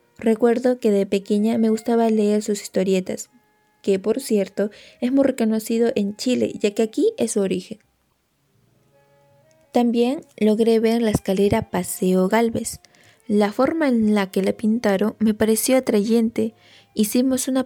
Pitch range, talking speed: 205-245 Hz, 145 wpm